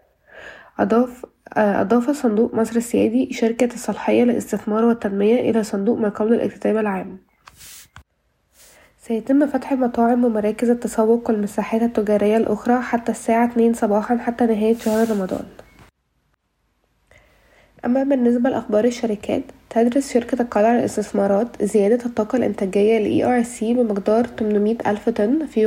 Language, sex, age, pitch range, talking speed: Arabic, female, 20-39, 210-235 Hz, 115 wpm